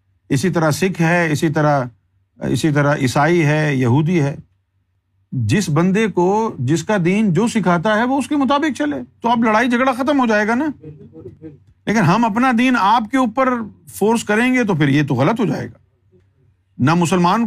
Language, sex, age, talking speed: Urdu, male, 50-69, 190 wpm